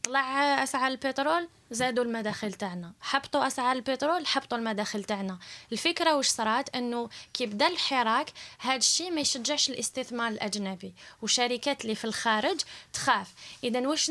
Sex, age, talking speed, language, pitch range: female, 20-39, 130 wpm, Arabic, 220-270 Hz